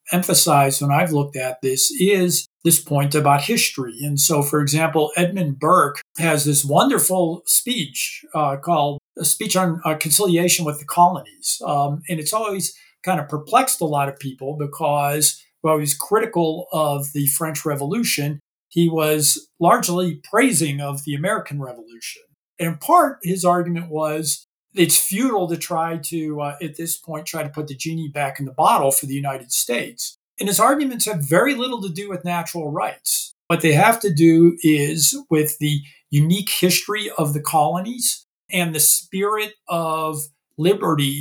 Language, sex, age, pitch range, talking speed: English, male, 50-69, 145-175 Hz, 165 wpm